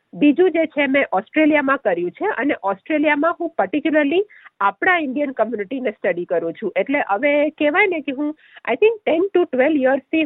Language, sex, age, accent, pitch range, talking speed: Gujarati, female, 50-69, native, 255-345 Hz, 175 wpm